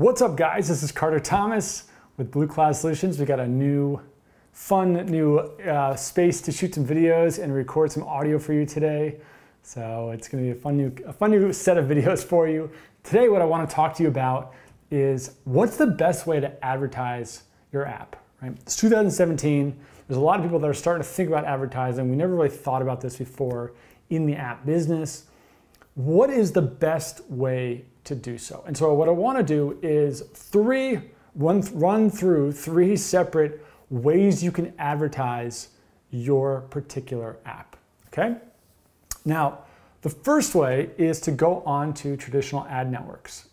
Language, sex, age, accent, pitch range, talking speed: English, male, 30-49, American, 130-165 Hz, 180 wpm